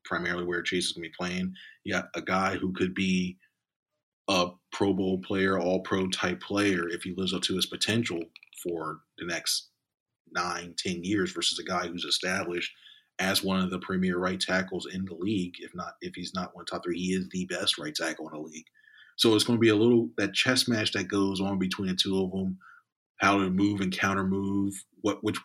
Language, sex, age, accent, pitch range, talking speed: English, male, 30-49, American, 90-100 Hz, 220 wpm